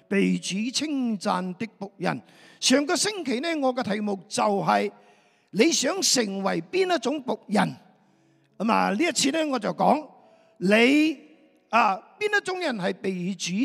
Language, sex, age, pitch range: Chinese, male, 50-69, 180-265 Hz